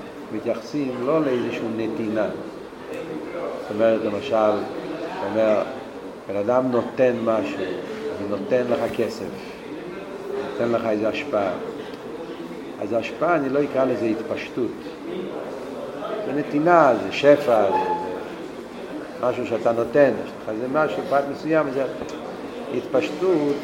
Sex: male